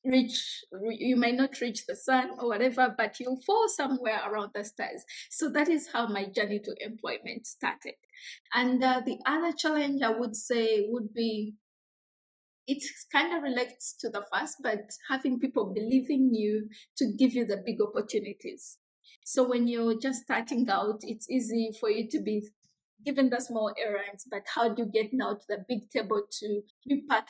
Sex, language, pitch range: female, English, 215-260 Hz